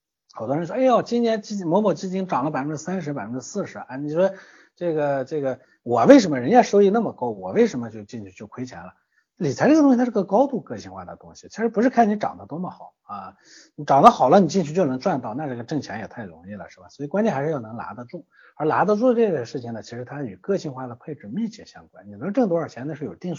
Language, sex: Chinese, male